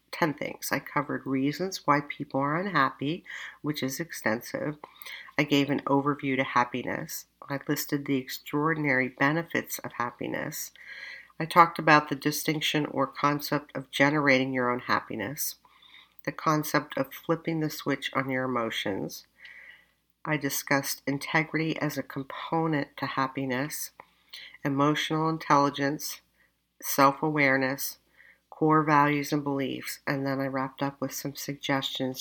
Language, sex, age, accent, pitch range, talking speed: English, female, 50-69, American, 135-155 Hz, 130 wpm